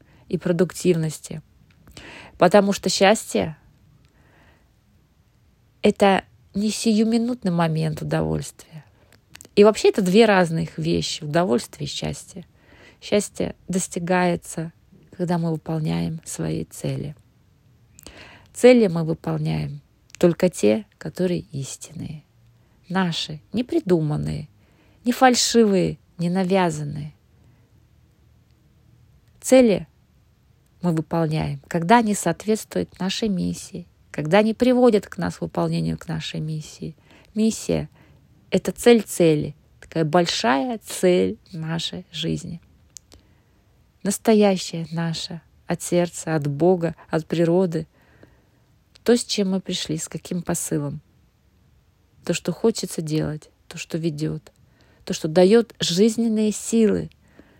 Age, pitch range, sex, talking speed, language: 20-39, 145-195 Hz, female, 100 wpm, Russian